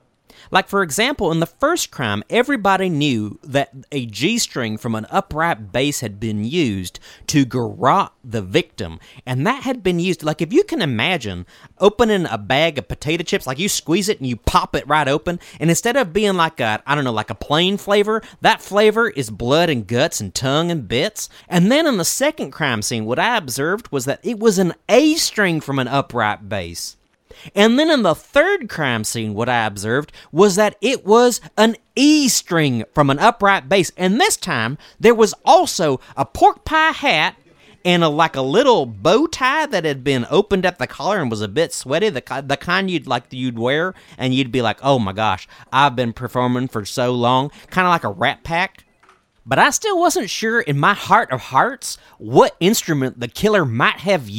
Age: 30-49